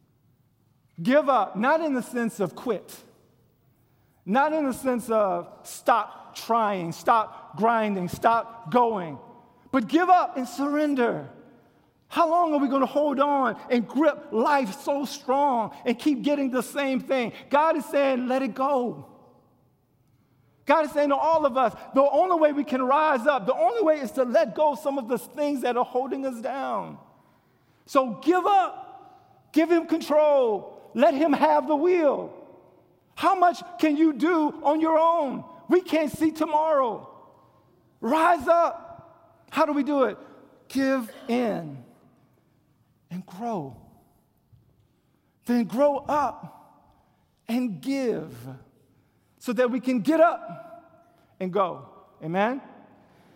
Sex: male